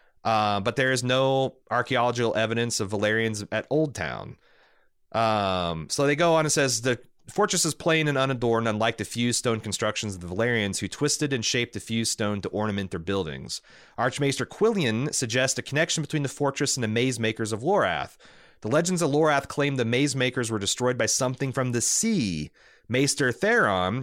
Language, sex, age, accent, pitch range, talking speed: English, male, 30-49, American, 105-145 Hz, 185 wpm